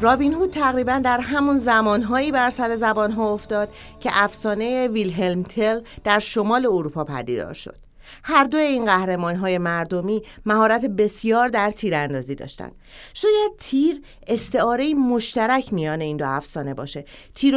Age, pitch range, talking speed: 40-59, 195-250 Hz, 140 wpm